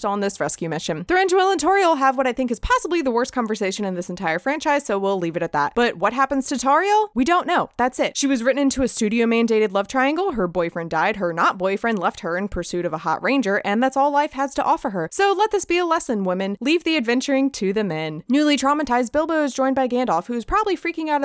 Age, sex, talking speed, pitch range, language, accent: 20-39, female, 255 wpm, 195-300 Hz, English, American